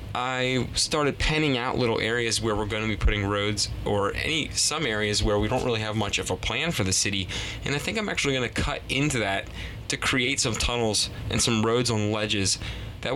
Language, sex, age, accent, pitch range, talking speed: English, male, 20-39, American, 100-115 Hz, 225 wpm